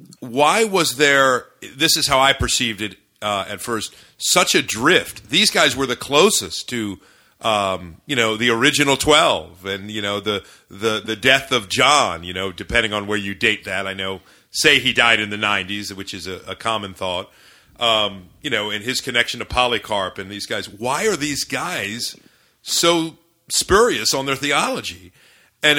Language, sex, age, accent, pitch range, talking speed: English, male, 40-59, American, 105-140 Hz, 185 wpm